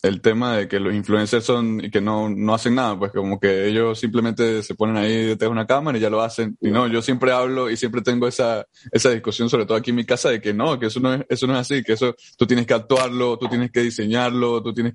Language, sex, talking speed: Spanish, male, 275 wpm